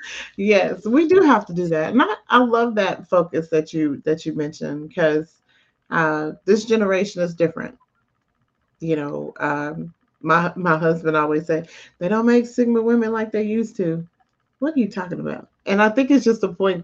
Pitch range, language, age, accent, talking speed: 160-220 Hz, English, 30-49, American, 190 wpm